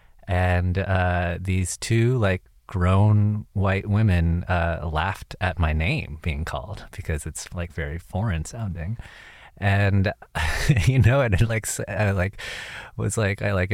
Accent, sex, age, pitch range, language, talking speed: American, male, 30-49, 90-105 Hz, English, 140 wpm